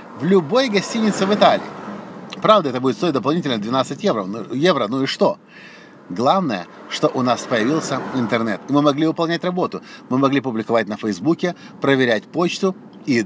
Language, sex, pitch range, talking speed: Russian, male, 135-190 Hz, 155 wpm